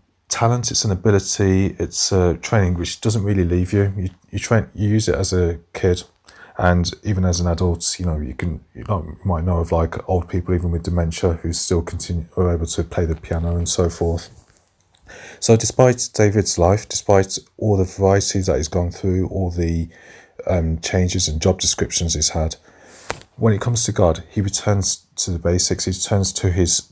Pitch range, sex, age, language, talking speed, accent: 85-100 Hz, male, 30-49, English, 200 wpm, British